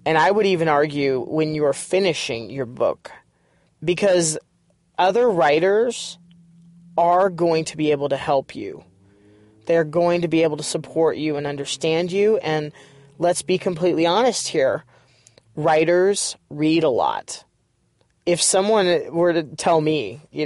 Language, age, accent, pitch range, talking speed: English, 30-49, American, 150-180 Hz, 145 wpm